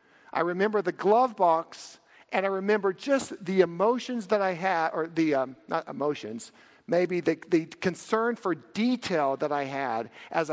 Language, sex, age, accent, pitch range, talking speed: English, male, 50-69, American, 145-190 Hz, 165 wpm